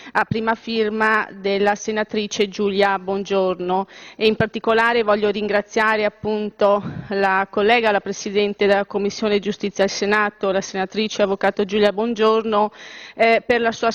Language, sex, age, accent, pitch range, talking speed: Italian, female, 30-49, native, 205-230 Hz, 135 wpm